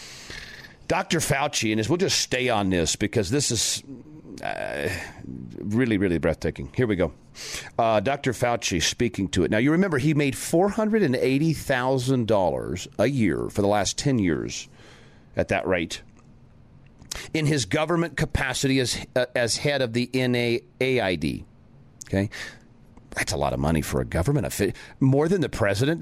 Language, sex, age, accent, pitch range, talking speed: English, male, 40-59, American, 110-160 Hz, 150 wpm